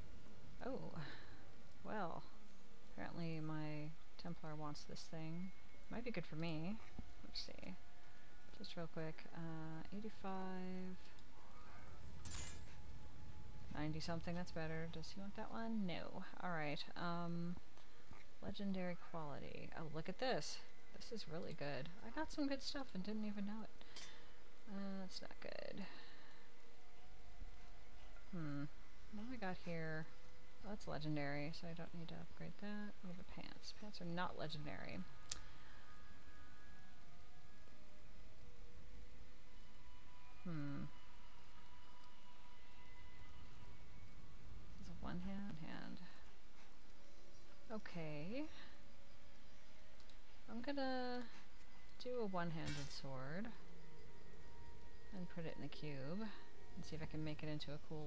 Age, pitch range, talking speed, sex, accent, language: 30-49, 120-190 Hz, 110 wpm, female, American, English